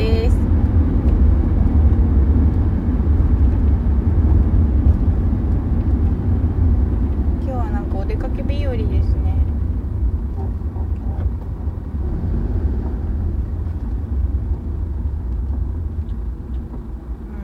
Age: 60-79